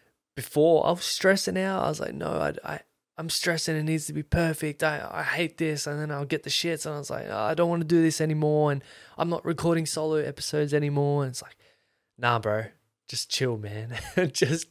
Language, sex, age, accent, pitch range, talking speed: English, male, 20-39, Australian, 115-155 Hz, 230 wpm